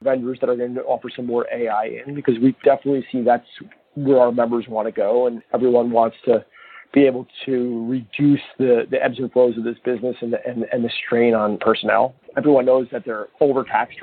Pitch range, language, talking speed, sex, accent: 115-135 Hz, English, 205 wpm, male, American